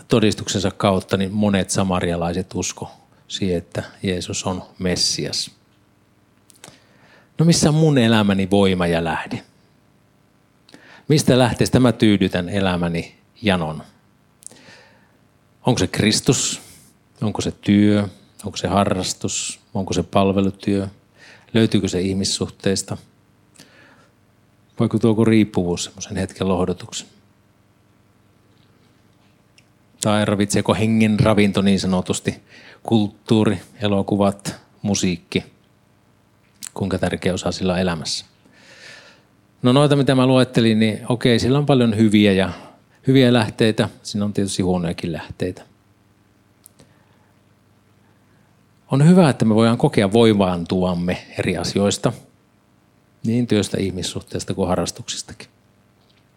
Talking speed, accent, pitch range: 100 wpm, native, 95-115 Hz